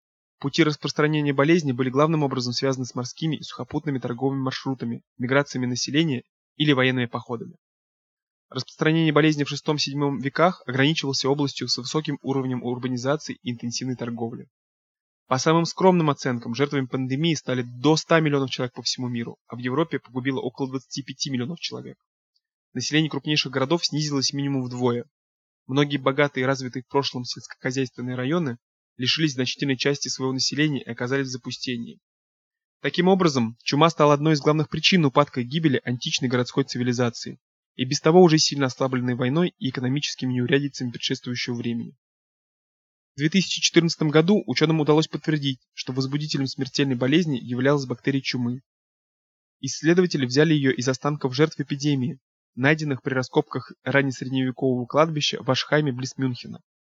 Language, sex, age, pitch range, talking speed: Russian, male, 20-39, 125-150 Hz, 140 wpm